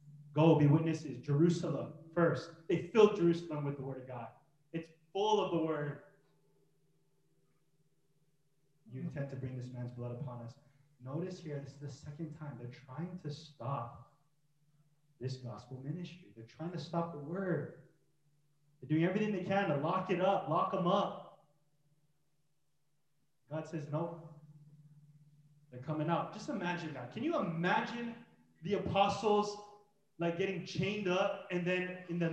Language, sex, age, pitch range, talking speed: English, male, 20-39, 150-215 Hz, 150 wpm